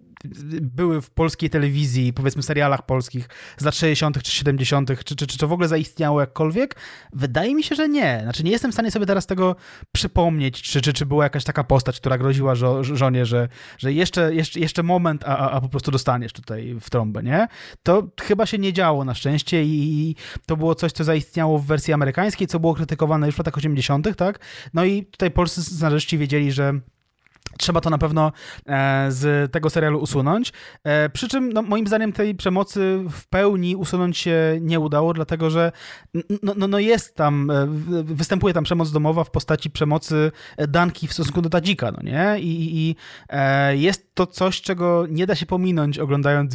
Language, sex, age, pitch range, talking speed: Polish, male, 20-39, 140-170 Hz, 190 wpm